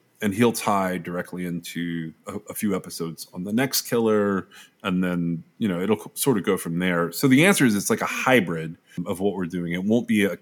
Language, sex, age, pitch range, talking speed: English, male, 30-49, 90-120 Hz, 220 wpm